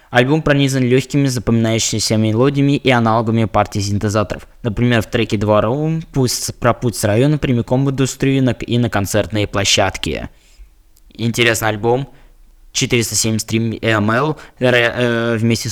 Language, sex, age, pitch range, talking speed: Russian, male, 20-39, 105-135 Hz, 115 wpm